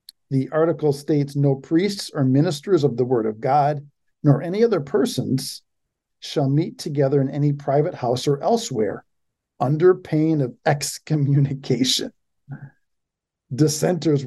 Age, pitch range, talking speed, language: 50-69, 135-185 Hz, 125 wpm, English